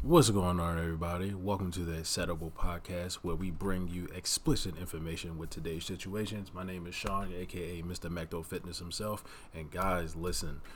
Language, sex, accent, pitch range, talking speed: English, male, American, 85-105 Hz, 165 wpm